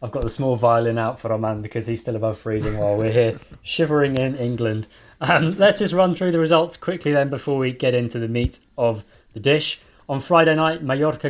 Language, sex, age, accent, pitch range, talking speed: English, male, 20-39, British, 115-145 Hz, 225 wpm